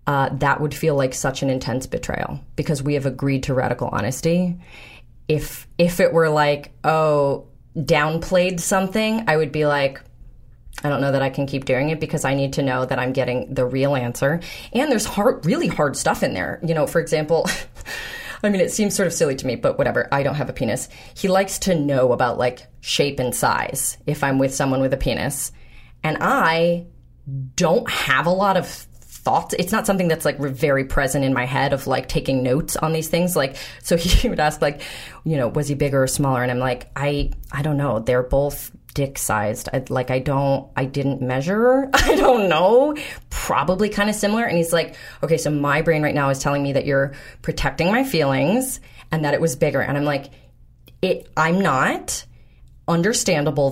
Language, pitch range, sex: English, 135-165 Hz, female